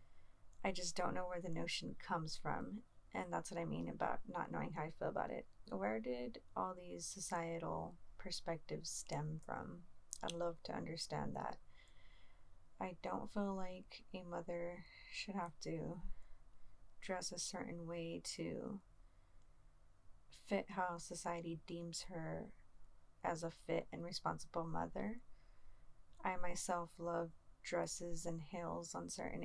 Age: 30-49